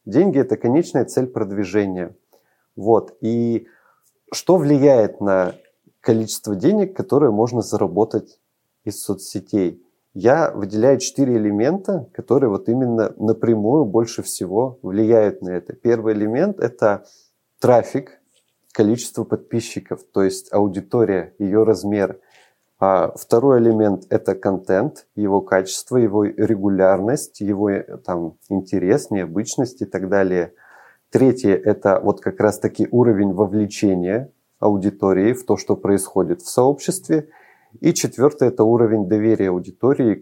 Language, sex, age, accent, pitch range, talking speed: Russian, male, 30-49, native, 95-120 Hz, 120 wpm